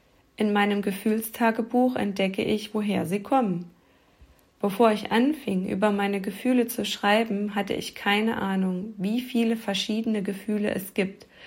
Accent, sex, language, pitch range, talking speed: German, female, English, 195-225 Hz, 135 wpm